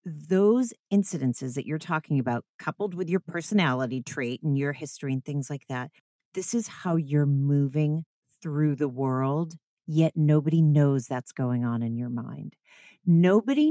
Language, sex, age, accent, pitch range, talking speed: English, female, 40-59, American, 145-210 Hz, 160 wpm